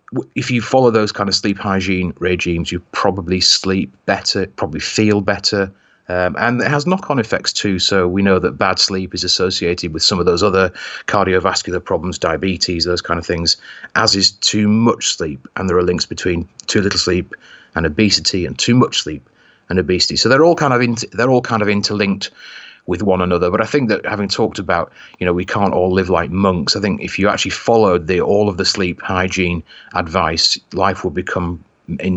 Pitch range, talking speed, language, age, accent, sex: 90-105 Hz, 205 wpm, English, 30-49, British, male